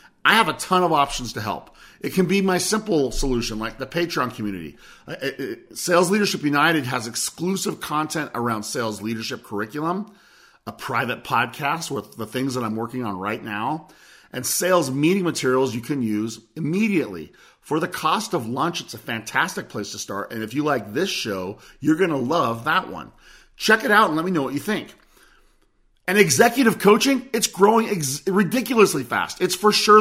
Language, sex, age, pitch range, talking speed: English, male, 40-59, 115-175 Hz, 185 wpm